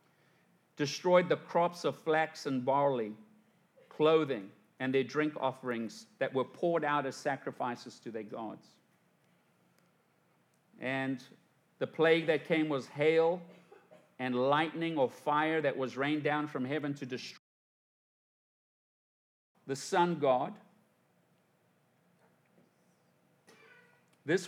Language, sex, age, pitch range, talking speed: English, male, 50-69, 135-170 Hz, 110 wpm